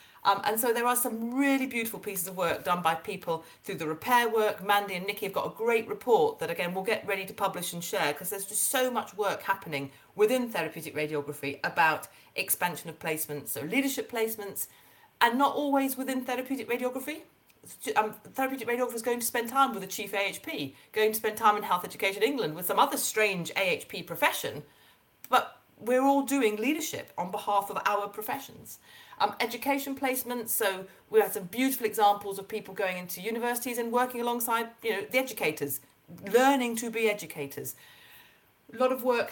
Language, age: English, 40-59